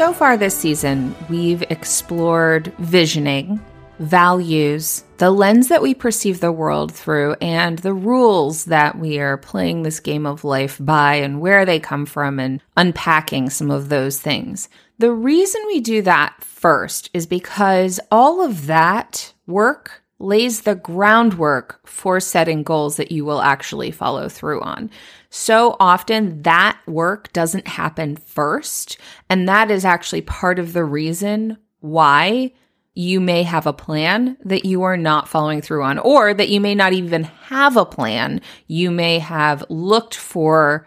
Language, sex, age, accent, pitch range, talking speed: English, female, 30-49, American, 150-205 Hz, 155 wpm